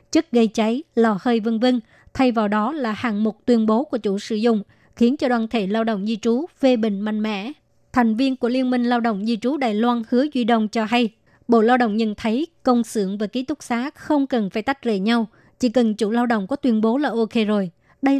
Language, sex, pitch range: Vietnamese, male, 220-245 Hz